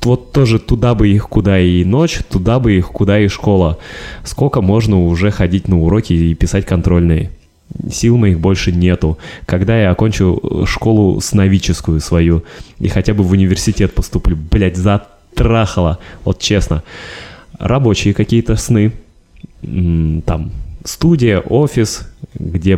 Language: Russian